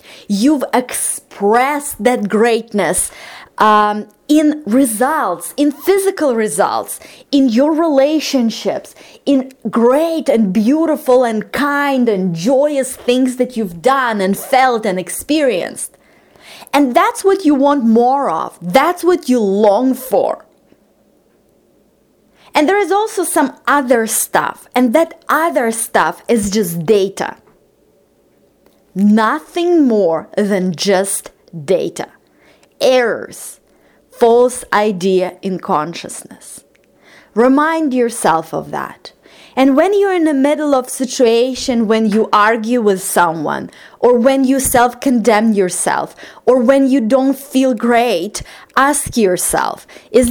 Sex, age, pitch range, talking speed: female, 20-39, 210-280 Hz, 115 wpm